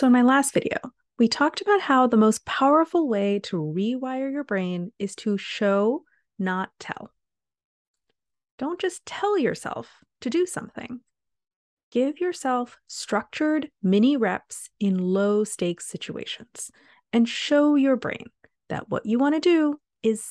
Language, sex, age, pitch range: English, female, 30-49, 200-265 Hz